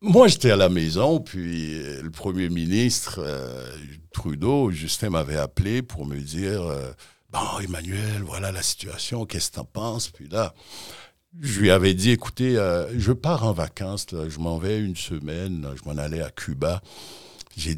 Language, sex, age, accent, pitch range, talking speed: French, male, 60-79, French, 80-115 Hz, 185 wpm